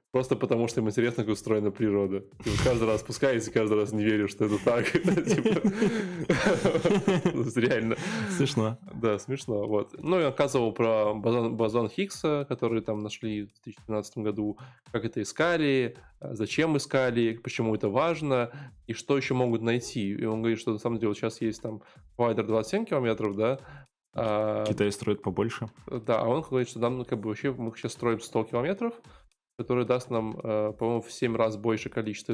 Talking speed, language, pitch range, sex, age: 160 wpm, Russian, 110-130 Hz, male, 20-39